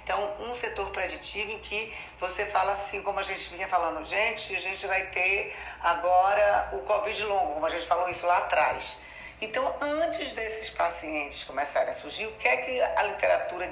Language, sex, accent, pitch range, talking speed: Portuguese, female, Brazilian, 180-220 Hz, 190 wpm